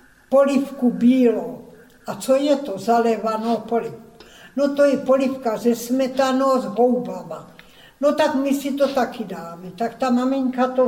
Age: 60-79